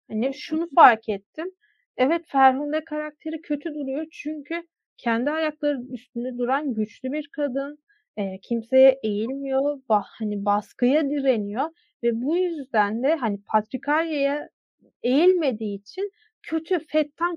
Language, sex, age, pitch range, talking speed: Turkish, female, 30-49, 235-300 Hz, 115 wpm